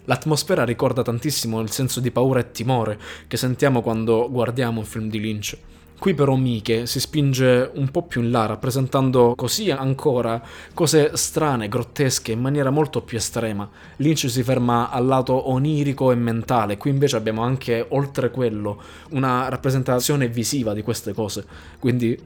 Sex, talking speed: male, 160 wpm